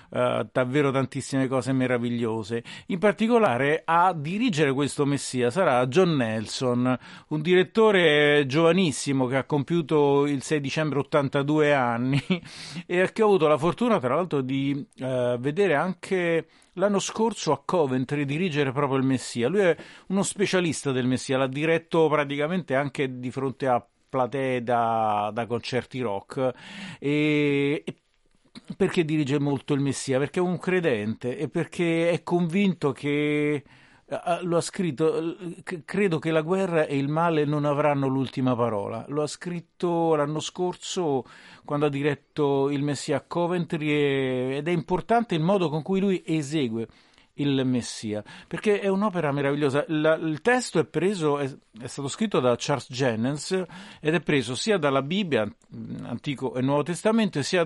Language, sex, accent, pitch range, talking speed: Italian, male, native, 130-170 Hz, 150 wpm